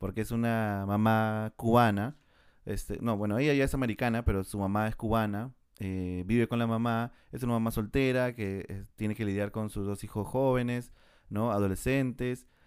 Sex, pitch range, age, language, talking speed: male, 100-120 Hz, 30-49, Spanish, 175 wpm